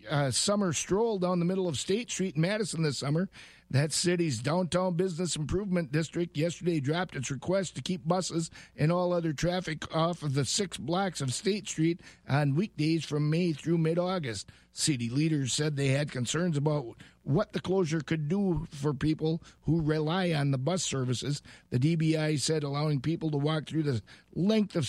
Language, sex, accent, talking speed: English, male, American, 180 wpm